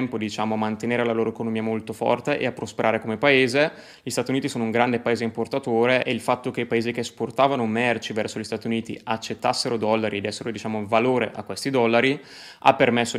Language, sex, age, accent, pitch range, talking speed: Italian, male, 20-39, native, 110-125 Hz, 205 wpm